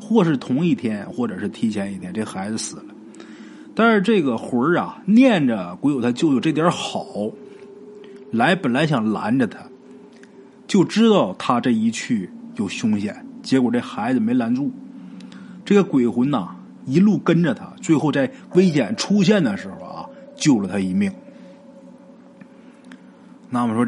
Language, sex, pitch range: Chinese, male, 165-255 Hz